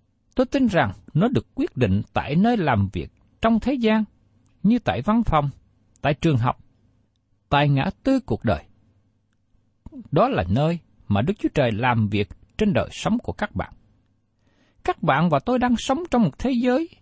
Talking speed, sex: 180 wpm, male